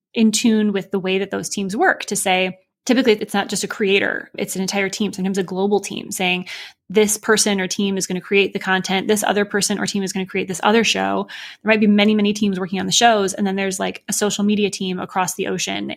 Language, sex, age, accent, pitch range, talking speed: English, female, 20-39, American, 185-210 Hz, 260 wpm